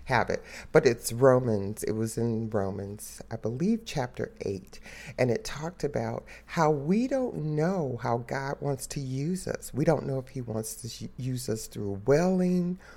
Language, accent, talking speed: English, American, 175 wpm